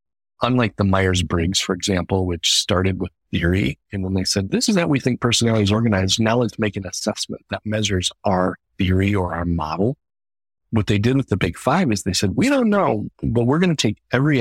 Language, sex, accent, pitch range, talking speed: English, male, American, 90-110 Hz, 215 wpm